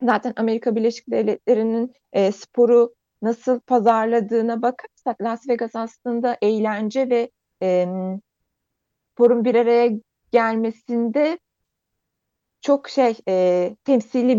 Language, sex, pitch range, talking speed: Turkish, female, 195-265 Hz, 95 wpm